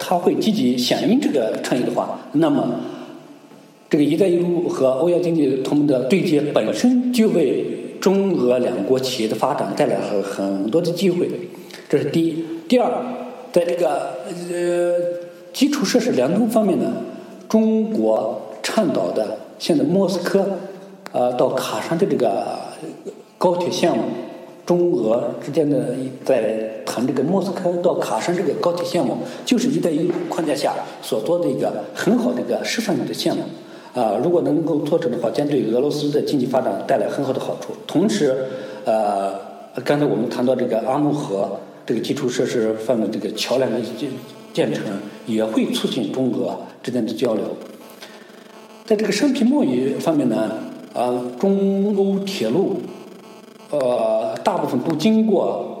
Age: 50-69